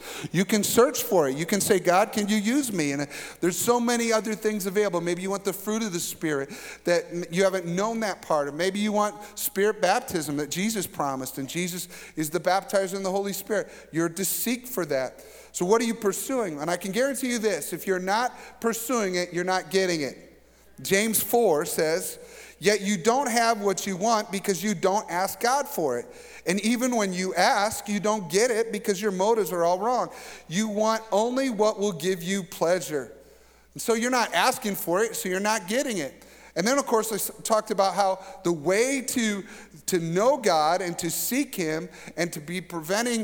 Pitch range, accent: 175-225 Hz, American